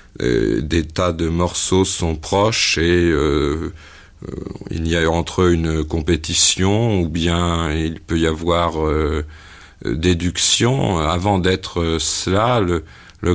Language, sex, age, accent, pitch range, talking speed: French, male, 50-69, French, 80-95 Hz, 125 wpm